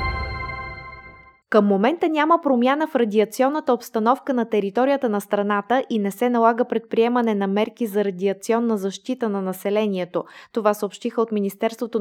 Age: 20-39